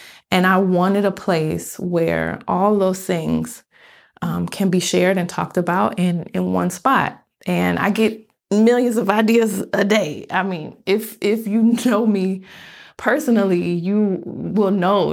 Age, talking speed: 20-39, 155 wpm